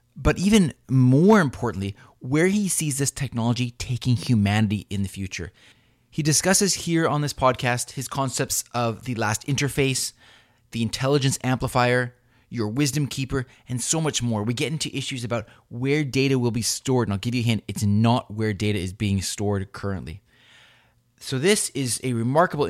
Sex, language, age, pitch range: male, English, 20-39, 105-140 Hz